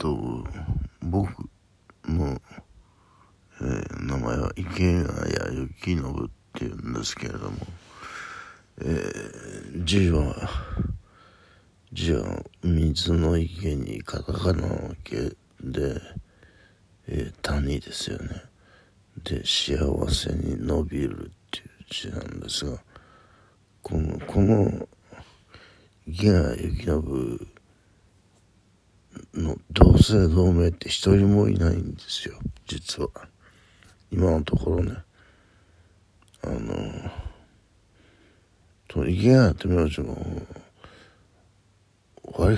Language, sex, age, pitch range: Japanese, male, 60-79, 85-100 Hz